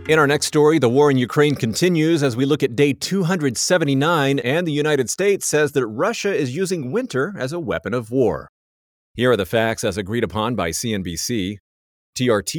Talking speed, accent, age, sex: 190 wpm, American, 40-59, male